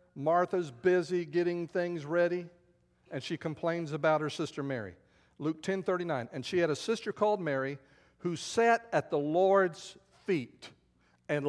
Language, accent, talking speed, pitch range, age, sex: English, American, 150 wpm, 135-190 Hz, 50-69, male